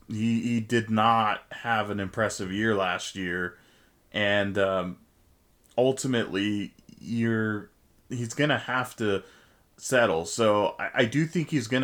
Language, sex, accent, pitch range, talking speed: English, male, American, 100-115 Hz, 135 wpm